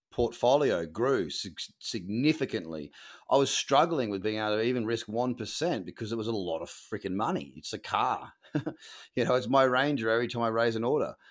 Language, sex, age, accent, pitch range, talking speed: English, male, 30-49, Australian, 110-130 Hz, 190 wpm